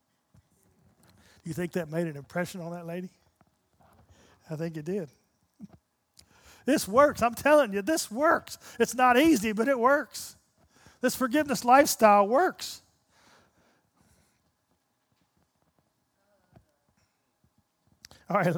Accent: American